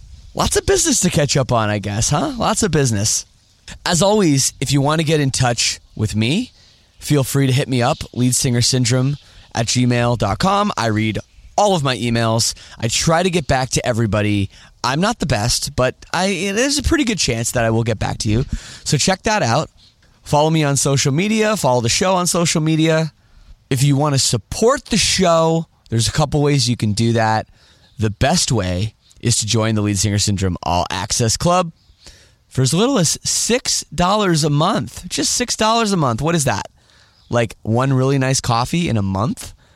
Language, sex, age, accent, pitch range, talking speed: English, male, 20-39, American, 110-155 Hz, 195 wpm